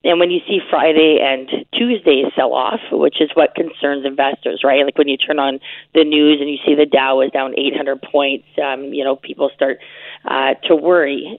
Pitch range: 140-170 Hz